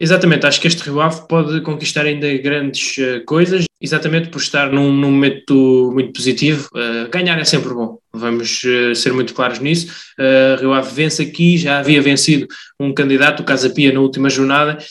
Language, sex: Portuguese, male